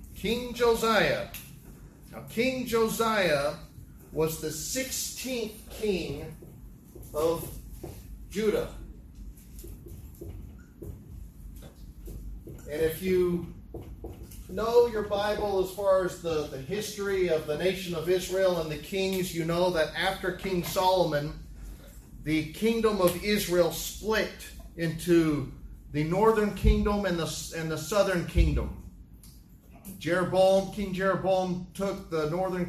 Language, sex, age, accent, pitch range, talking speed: English, male, 40-59, American, 145-185 Hz, 105 wpm